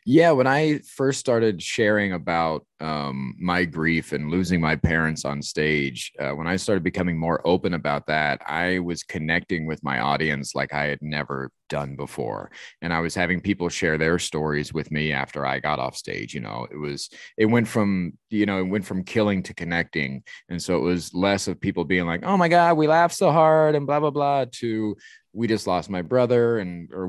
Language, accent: English, American